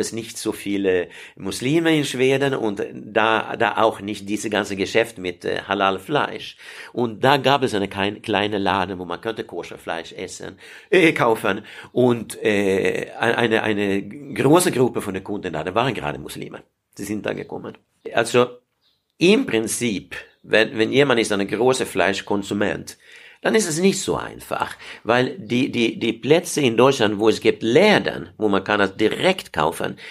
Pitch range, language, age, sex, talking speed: 95-125 Hz, German, 60-79, male, 170 wpm